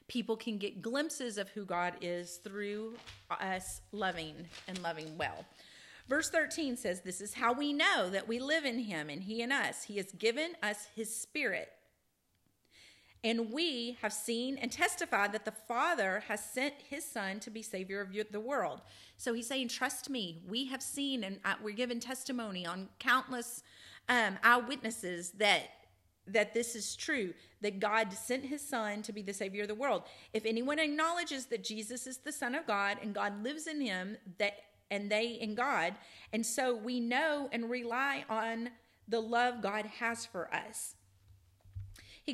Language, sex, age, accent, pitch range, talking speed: English, female, 40-59, American, 200-255 Hz, 175 wpm